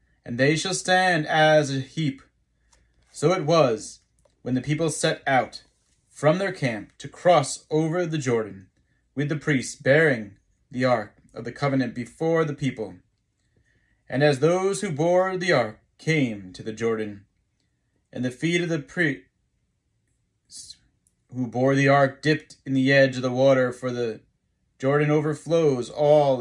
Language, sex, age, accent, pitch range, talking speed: English, male, 30-49, American, 110-150 Hz, 155 wpm